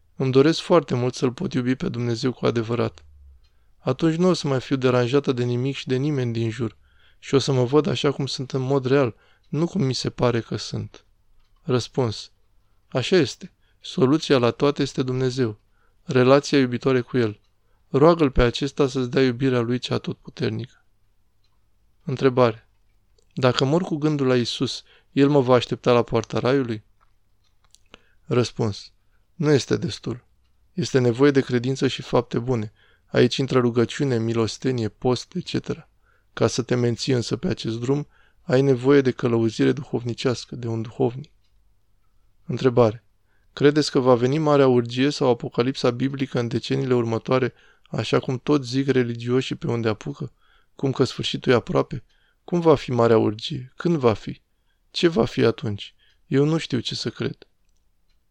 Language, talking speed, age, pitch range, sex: Romanian, 160 wpm, 20-39, 110-135 Hz, male